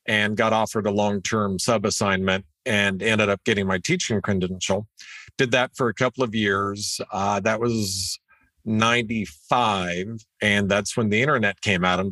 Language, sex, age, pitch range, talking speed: English, male, 50-69, 100-120 Hz, 160 wpm